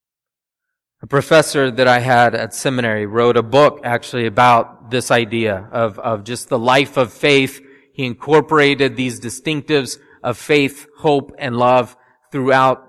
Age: 30-49